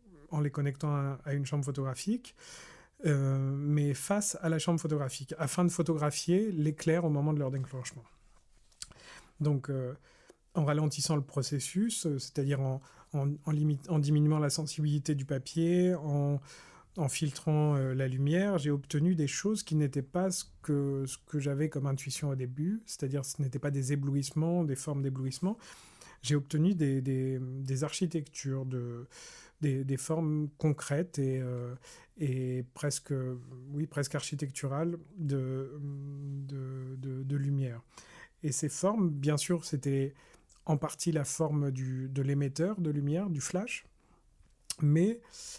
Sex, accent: male, French